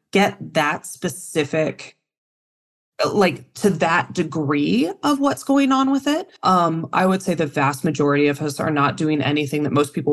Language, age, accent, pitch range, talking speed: English, 20-39, American, 135-190 Hz, 170 wpm